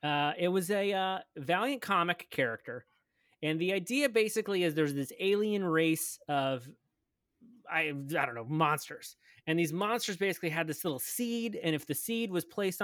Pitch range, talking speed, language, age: 140-190 Hz, 175 wpm, English, 30-49